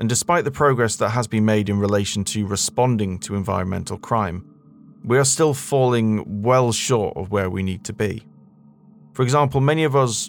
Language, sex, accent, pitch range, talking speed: English, male, British, 100-120 Hz, 185 wpm